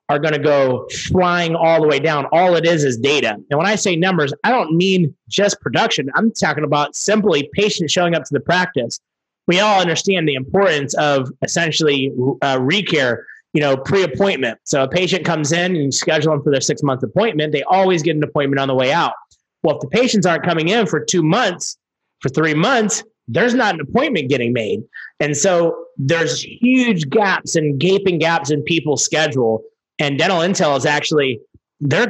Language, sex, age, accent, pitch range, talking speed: English, male, 30-49, American, 145-190 Hz, 195 wpm